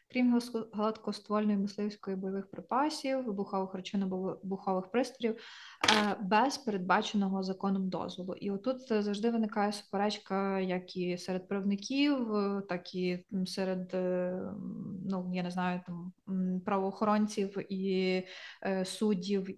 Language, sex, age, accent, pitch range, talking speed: Ukrainian, female, 20-39, native, 185-210 Hz, 105 wpm